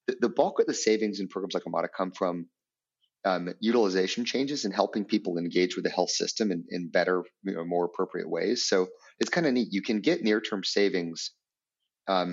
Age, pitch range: 30-49, 90-110 Hz